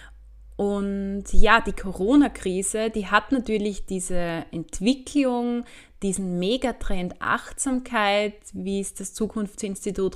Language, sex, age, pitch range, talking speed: German, female, 20-39, 180-225 Hz, 95 wpm